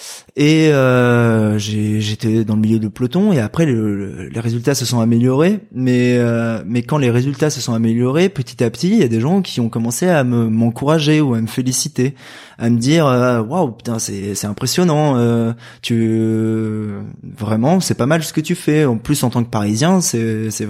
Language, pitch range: French, 115-140 Hz